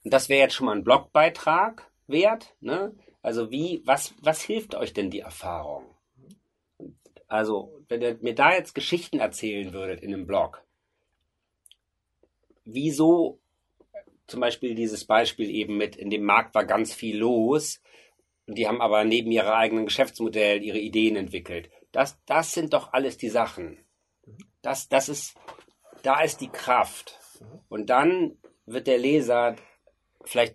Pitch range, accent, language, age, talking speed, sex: 110-145 Hz, German, German, 40-59, 150 wpm, male